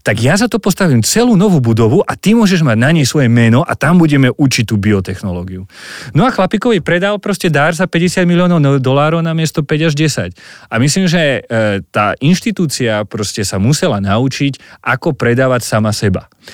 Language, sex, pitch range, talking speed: Slovak, male, 105-140 Hz, 180 wpm